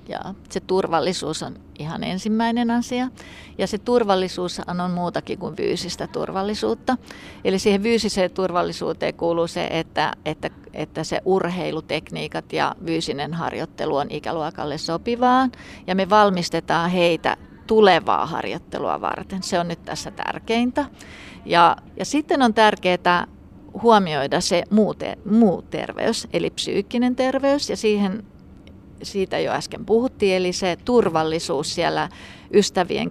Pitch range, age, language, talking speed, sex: 175-220 Hz, 30-49, Finnish, 120 wpm, female